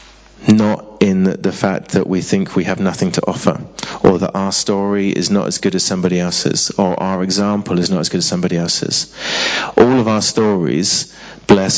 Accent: British